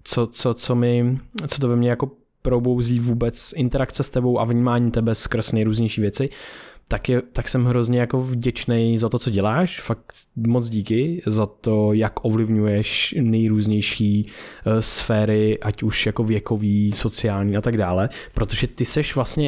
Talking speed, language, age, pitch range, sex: 160 wpm, Czech, 20-39, 110-130 Hz, male